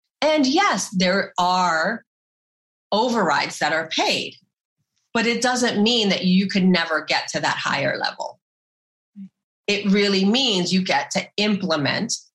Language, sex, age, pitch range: English, female, 30-49, 160-215 Hz